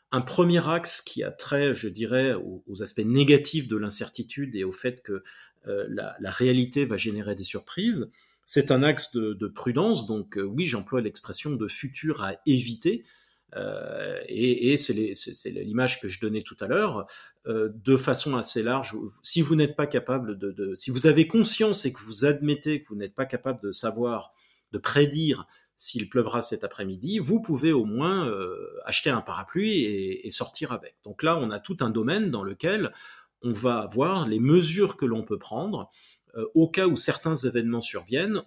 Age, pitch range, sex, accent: 40-59, 115-160 Hz, male, French